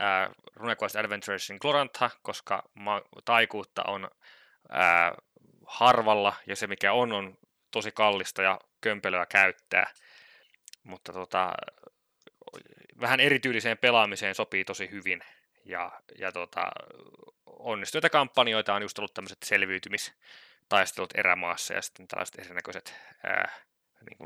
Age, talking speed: 20-39, 105 wpm